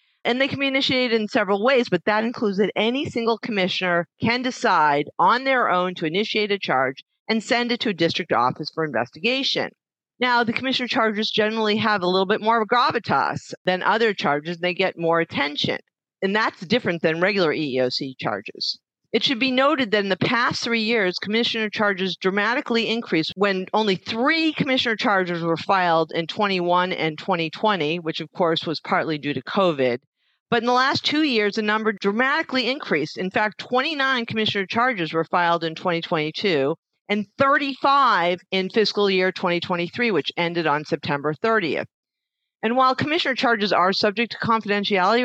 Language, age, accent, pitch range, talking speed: English, 40-59, American, 170-235 Hz, 175 wpm